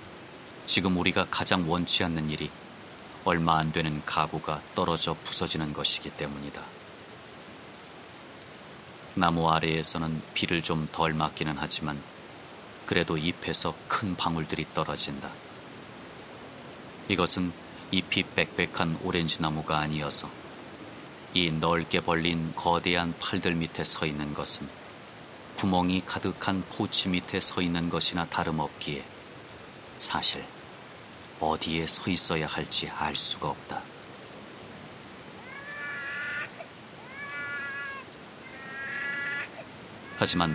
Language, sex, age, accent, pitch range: Korean, male, 30-49, native, 80-95 Hz